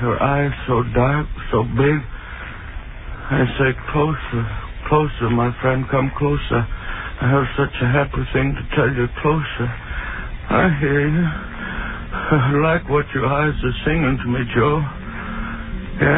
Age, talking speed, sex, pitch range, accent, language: 60-79, 135 wpm, male, 115-150 Hz, American, English